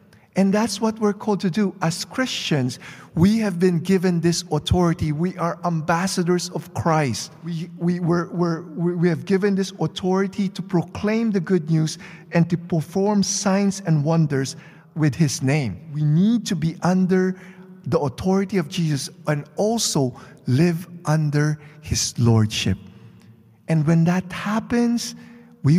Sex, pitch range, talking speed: male, 135-185 Hz, 145 wpm